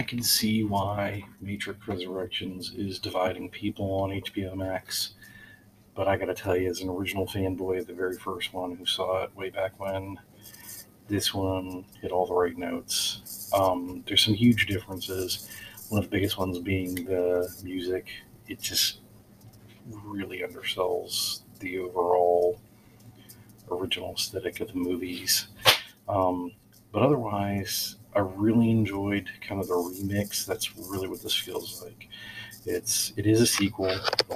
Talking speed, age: 150 wpm, 40-59